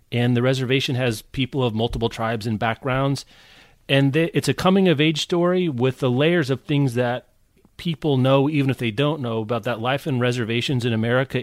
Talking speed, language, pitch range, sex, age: 190 wpm, English, 115-155 Hz, male, 30-49